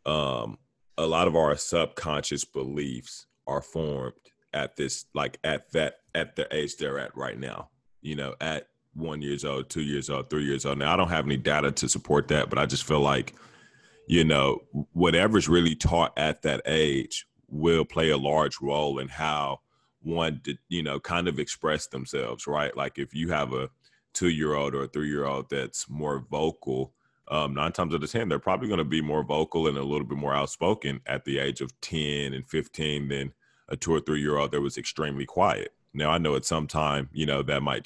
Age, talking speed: 30-49, 210 wpm